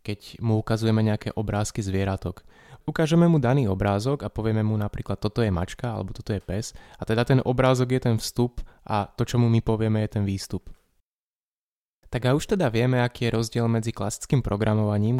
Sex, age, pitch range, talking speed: male, 20-39, 105-120 Hz, 190 wpm